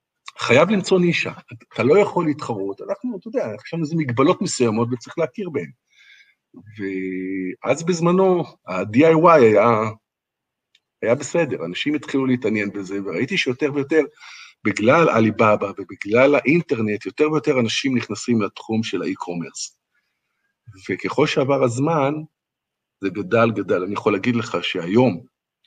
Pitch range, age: 110-155 Hz, 50-69